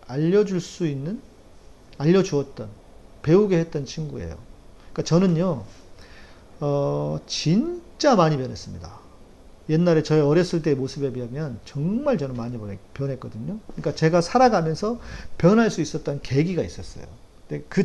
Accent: native